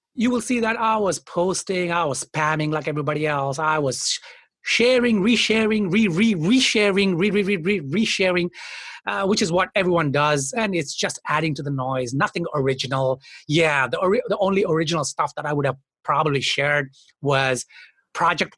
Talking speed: 170 wpm